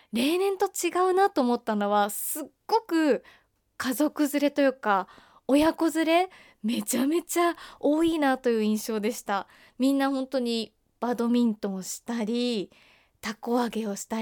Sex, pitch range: female, 225-325 Hz